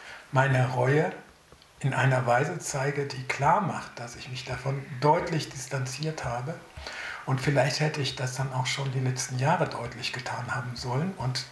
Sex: male